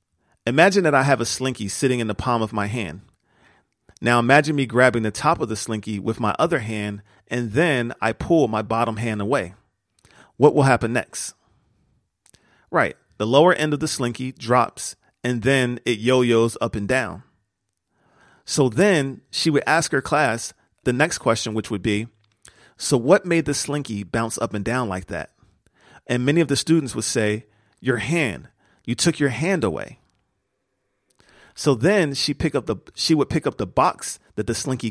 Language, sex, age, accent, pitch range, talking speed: English, male, 40-59, American, 105-135 Hz, 180 wpm